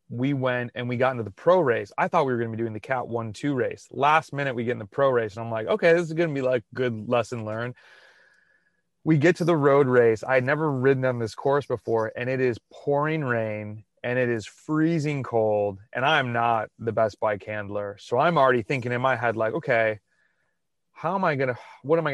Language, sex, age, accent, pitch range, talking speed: English, male, 30-49, American, 115-155 Hz, 245 wpm